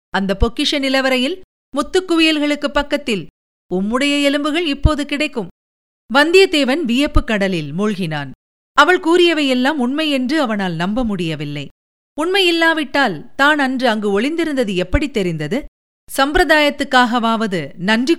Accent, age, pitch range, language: native, 50-69, 200-300 Hz, Tamil